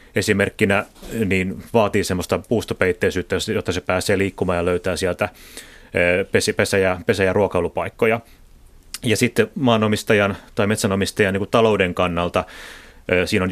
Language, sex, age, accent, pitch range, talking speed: Finnish, male, 30-49, native, 90-110 Hz, 110 wpm